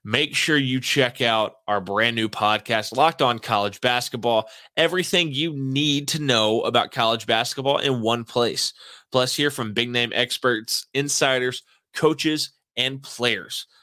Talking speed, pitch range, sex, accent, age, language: 140 wpm, 115-145 Hz, male, American, 20-39, English